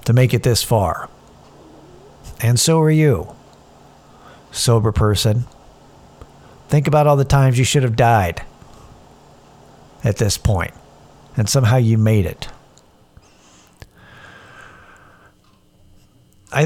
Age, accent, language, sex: 50-69, American, English, male